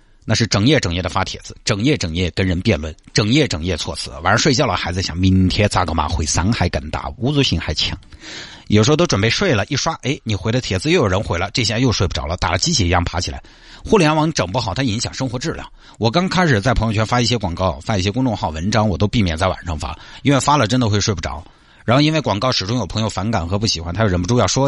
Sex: male